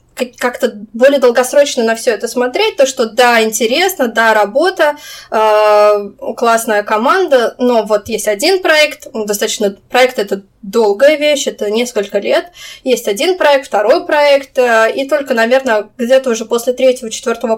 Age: 20-39